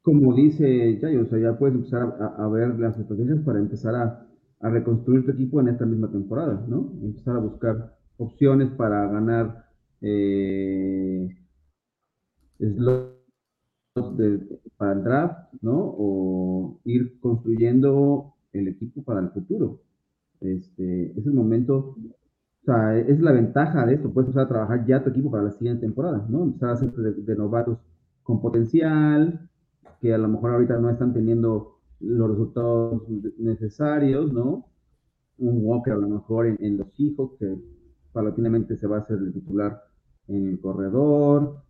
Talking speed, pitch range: 155 wpm, 105-135 Hz